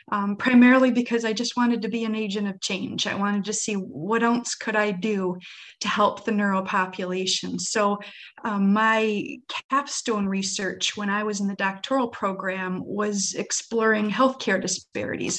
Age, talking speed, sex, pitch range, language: 30-49, 165 wpm, female, 190-220 Hz, English